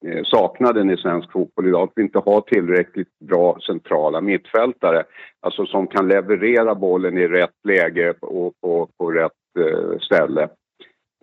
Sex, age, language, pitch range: male, 50-69, Swedish, 90-120 Hz